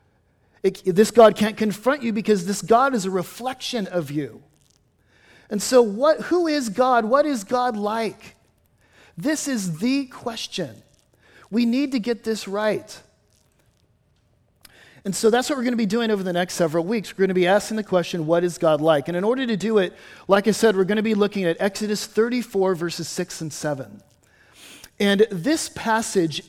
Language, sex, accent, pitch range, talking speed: English, male, American, 180-230 Hz, 180 wpm